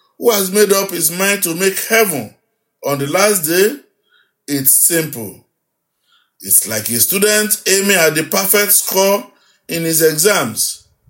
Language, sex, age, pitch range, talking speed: English, male, 50-69, 155-210 Hz, 145 wpm